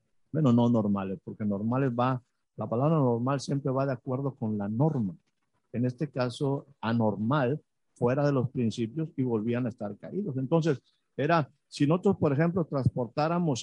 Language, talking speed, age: Spanish, 160 wpm, 50-69